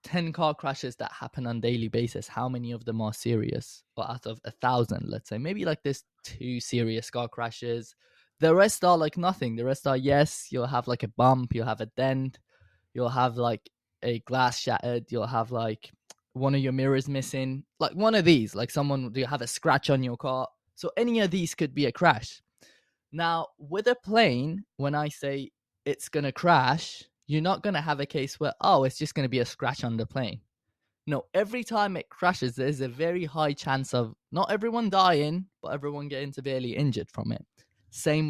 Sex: male